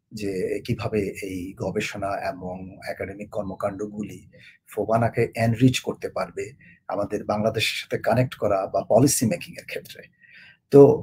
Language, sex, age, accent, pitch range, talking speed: Bengali, male, 50-69, native, 115-145 Hz, 60 wpm